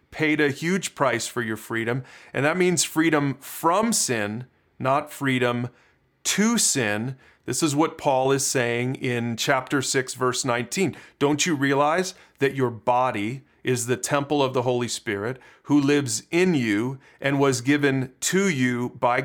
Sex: male